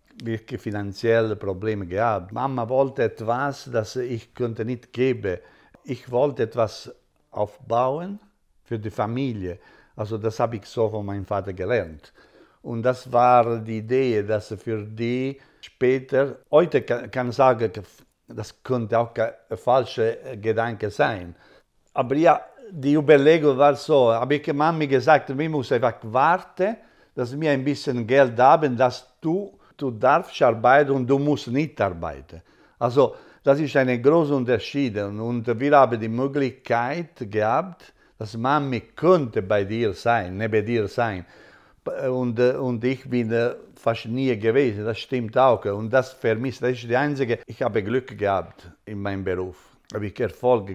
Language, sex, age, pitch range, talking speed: German, male, 50-69, 110-135 Hz, 155 wpm